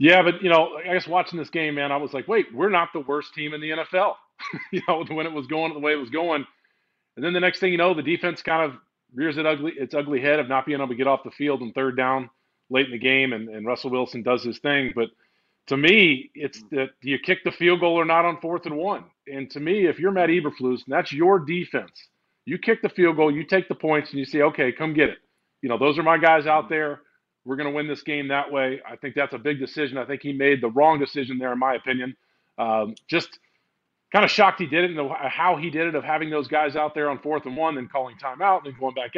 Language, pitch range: English, 135-165 Hz